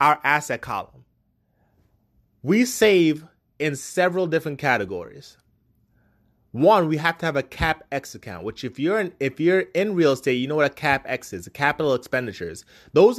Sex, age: male, 20-39